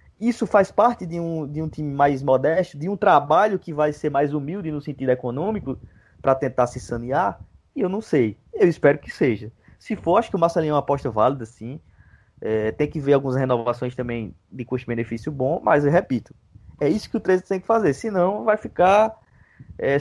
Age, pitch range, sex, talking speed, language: 20-39, 125-175 Hz, male, 205 wpm, Portuguese